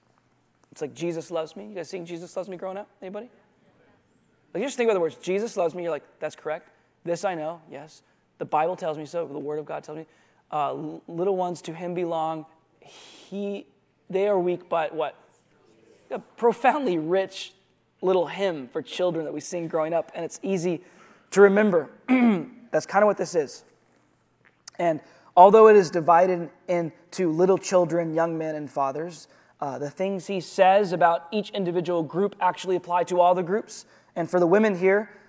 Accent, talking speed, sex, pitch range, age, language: American, 185 wpm, male, 165-200 Hz, 20-39, English